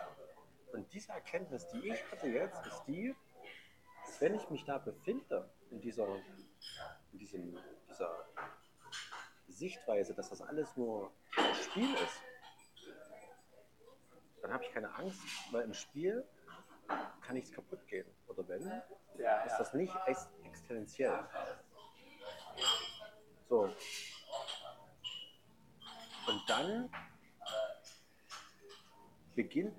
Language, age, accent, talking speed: German, 50-69, German, 95 wpm